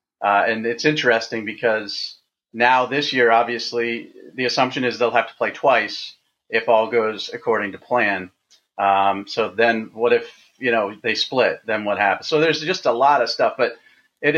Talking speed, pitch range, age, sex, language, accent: 185 wpm, 105-135 Hz, 30-49, male, English, American